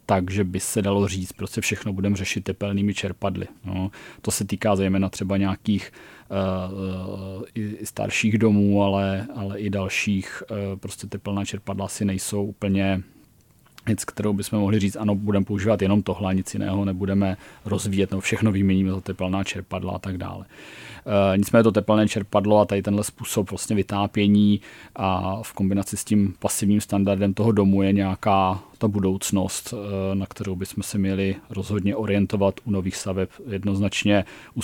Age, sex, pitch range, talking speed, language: 30-49, male, 95-105 Hz, 160 wpm, Czech